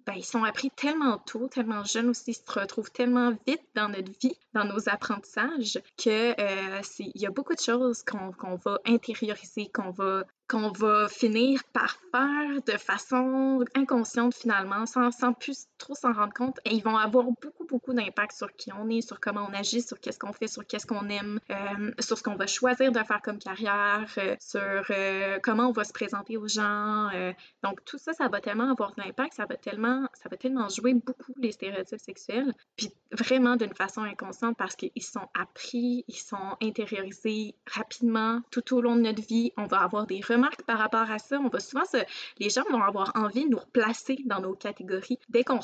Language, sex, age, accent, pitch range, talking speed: French, female, 20-39, Canadian, 205-250 Hz, 205 wpm